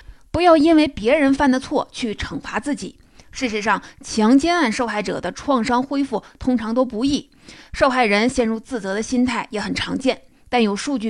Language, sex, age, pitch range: Chinese, female, 30-49, 215-270 Hz